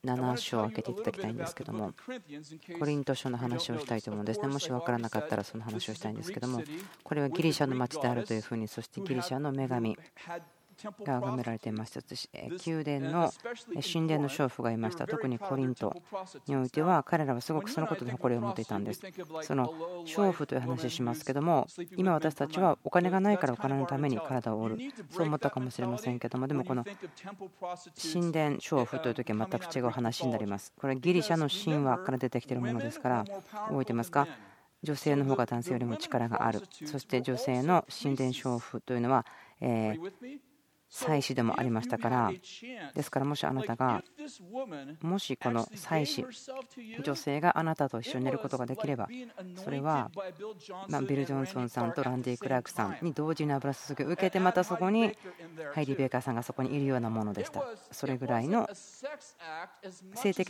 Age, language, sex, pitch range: 40-59, Japanese, female, 125-175 Hz